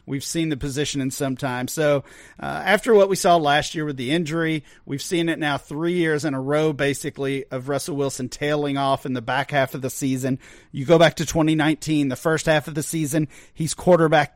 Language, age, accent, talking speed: English, 40-59, American, 220 wpm